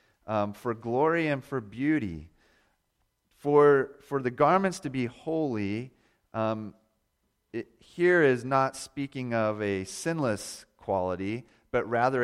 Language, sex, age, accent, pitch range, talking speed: English, male, 40-59, American, 110-140 Hz, 120 wpm